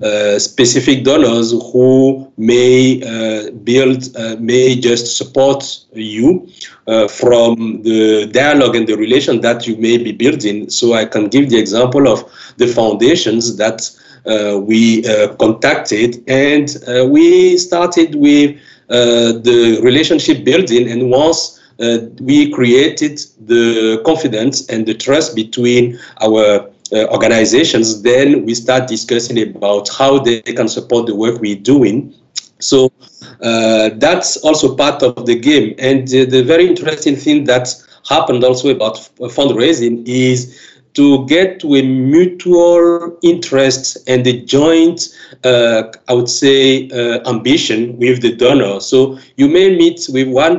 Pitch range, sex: 115-145 Hz, male